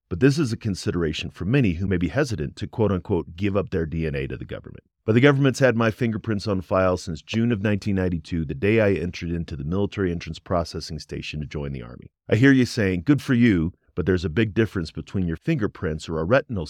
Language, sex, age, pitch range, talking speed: English, male, 40-59, 80-115 Hz, 235 wpm